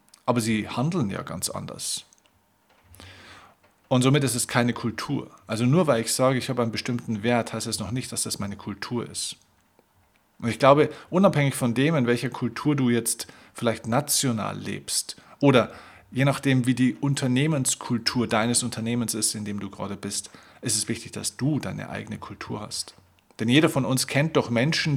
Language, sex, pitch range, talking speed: German, male, 110-125 Hz, 180 wpm